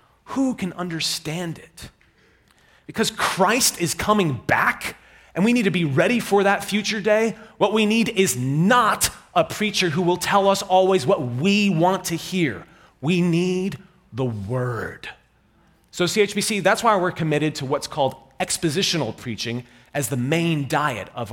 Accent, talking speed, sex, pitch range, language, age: American, 160 wpm, male, 135-185 Hz, English, 30-49